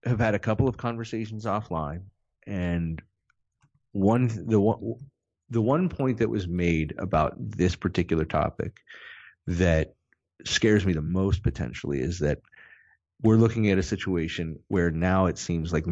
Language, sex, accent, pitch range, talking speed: English, male, American, 85-105 Hz, 145 wpm